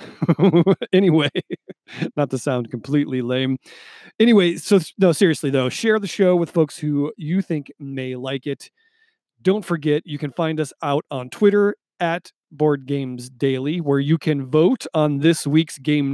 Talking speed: 160 wpm